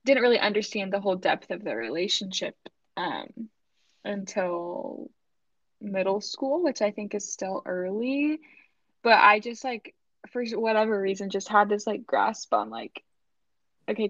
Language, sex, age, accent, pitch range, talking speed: English, female, 10-29, American, 195-235 Hz, 145 wpm